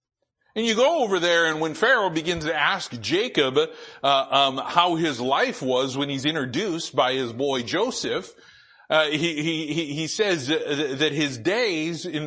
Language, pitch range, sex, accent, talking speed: English, 130-175 Hz, male, American, 165 wpm